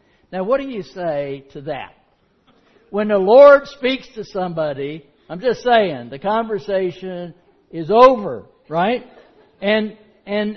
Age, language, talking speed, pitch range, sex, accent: 60-79, English, 130 wpm, 160-235 Hz, male, American